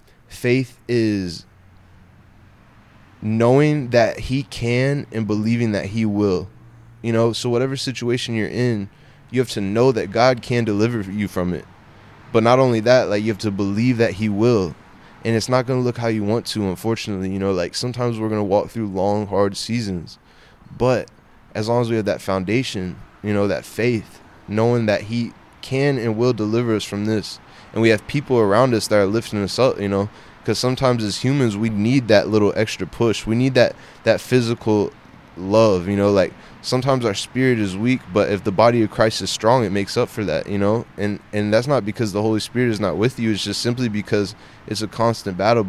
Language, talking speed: English, 210 wpm